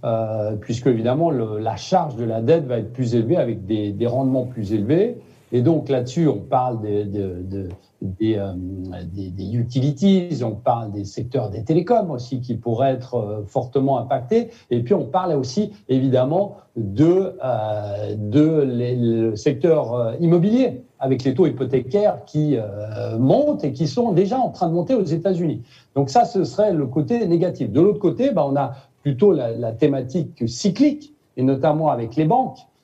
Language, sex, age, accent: French, male, 60-79, French